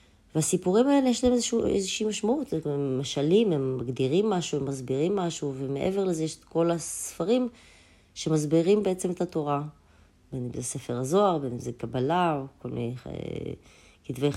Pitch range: 130-175 Hz